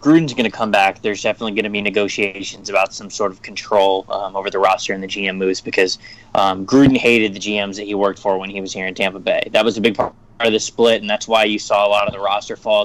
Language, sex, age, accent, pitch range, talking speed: English, male, 20-39, American, 105-130 Hz, 280 wpm